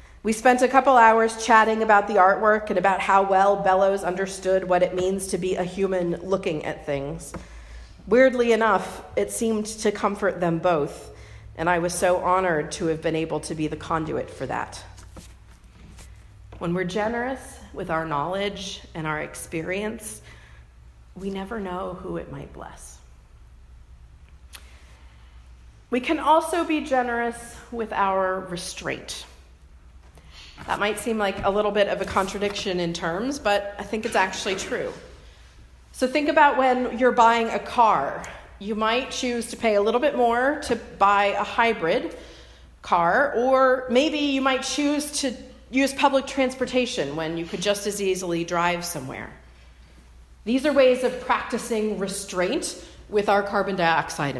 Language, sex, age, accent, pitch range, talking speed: English, female, 40-59, American, 155-230 Hz, 155 wpm